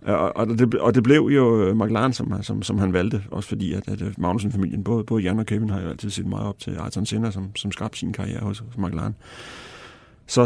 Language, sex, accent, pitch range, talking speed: Danish, male, native, 100-120 Hz, 235 wpm